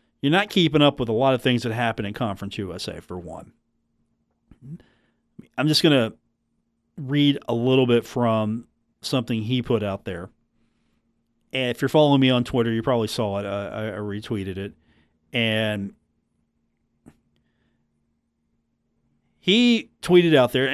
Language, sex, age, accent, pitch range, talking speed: English, male, 40-59, American, 115-160 Hz, 150 wpm